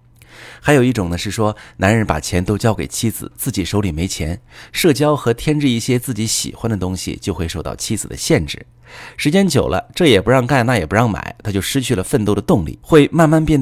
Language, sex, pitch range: Chinese, male, 95-145 Hz